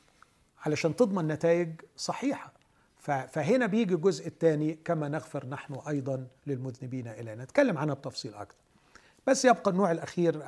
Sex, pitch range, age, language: male, 140-180 Hz, 40-59, Arabic